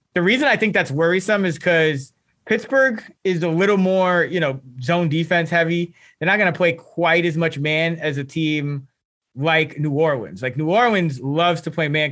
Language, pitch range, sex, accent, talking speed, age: English, 150-180 Hz, male, American, 200 wpm, 20-39